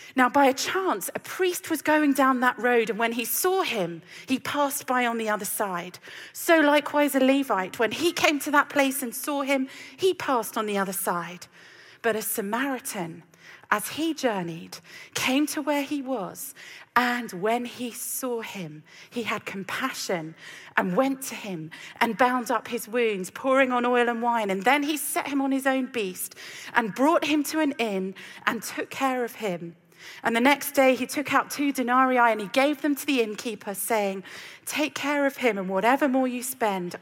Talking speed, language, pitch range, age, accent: 195 wpm, English, 190-275 Hz, 40-59, British